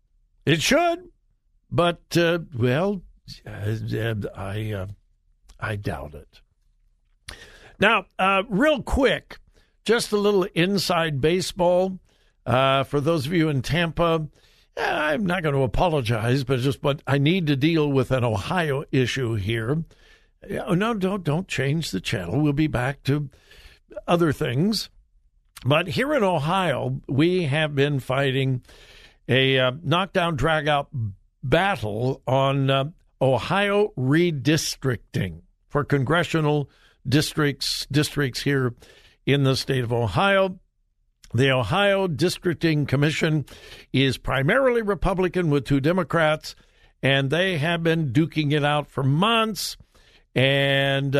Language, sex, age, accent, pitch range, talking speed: English, male, 60-79, American, 130-175 Hz, 120 wpm